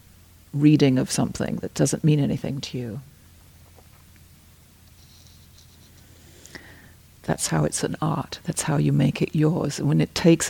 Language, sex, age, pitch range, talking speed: English, female, 60-79, 100-160 Hz, 130 wpm